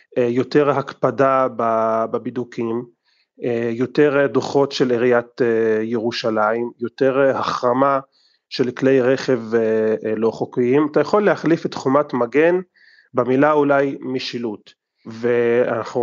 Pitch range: 115-145 Hz